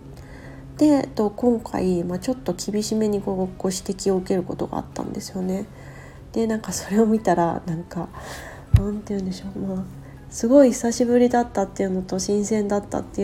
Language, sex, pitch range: Japanese, female, 175-220 Hz